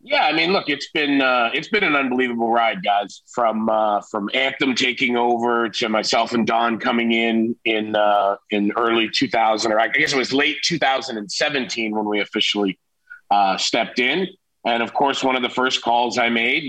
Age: 40-59